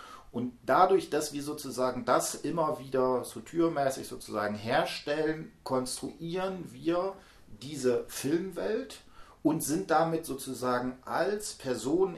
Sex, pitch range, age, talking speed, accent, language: male, 110-155 Hz, 40-59, 110 wpm, German, German